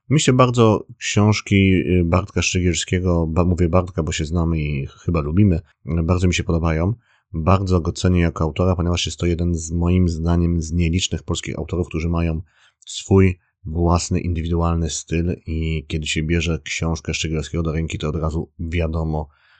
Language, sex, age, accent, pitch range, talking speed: Polish, male, 30-49, native, 80-95 Hz, 160 wpm